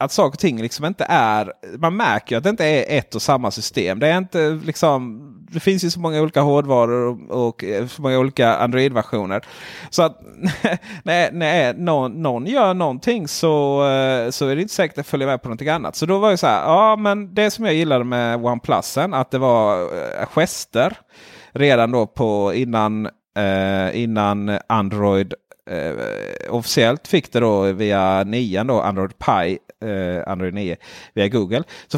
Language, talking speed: Swedish, 180 wpm